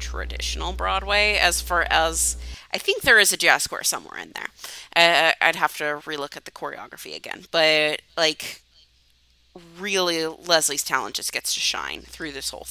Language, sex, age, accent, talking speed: English, female, 30-49, American, 170 wpm